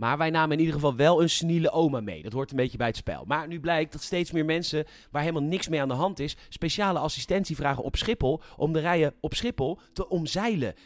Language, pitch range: Dutch, 125-170 Hz